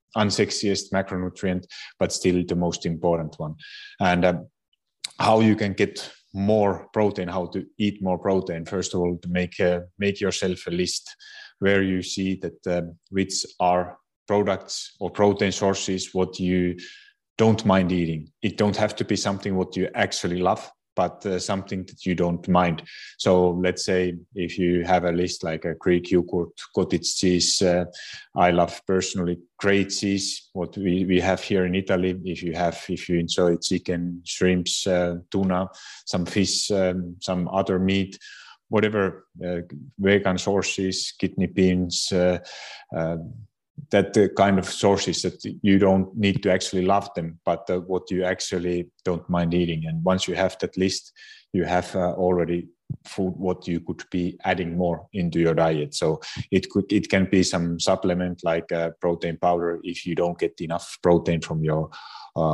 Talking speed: 165 wpm